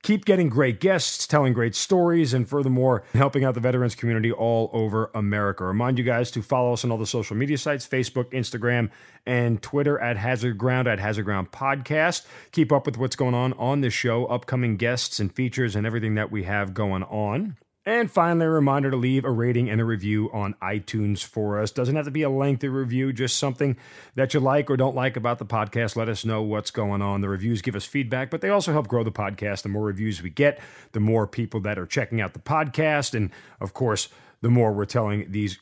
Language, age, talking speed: English, 40-59, 225 wpm